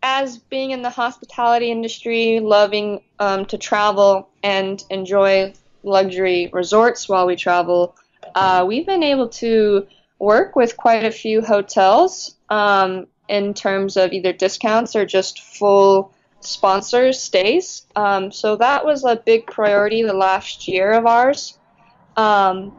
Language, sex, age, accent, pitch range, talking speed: English, female, 20-39, American, 185-225 Hz, 135 wpm